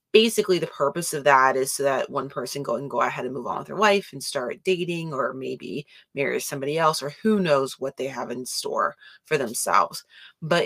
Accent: American